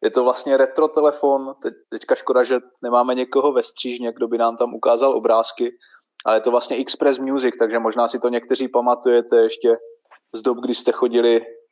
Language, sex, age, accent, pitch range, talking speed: Czech, male, 20-39, native, 110-145 Hz, 185 wpm